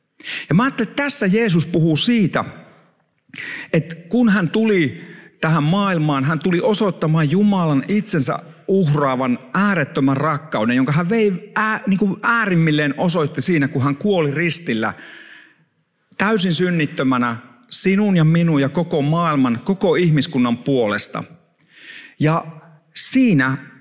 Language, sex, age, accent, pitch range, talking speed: Finnish, male, 50-69, native, 140-195 Hz, 120 wpm